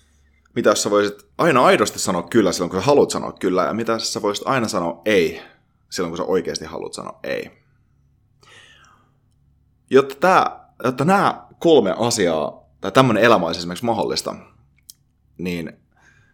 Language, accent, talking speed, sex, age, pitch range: Finnish, native, 145 wpm, male, 30-49, 90-120 Hz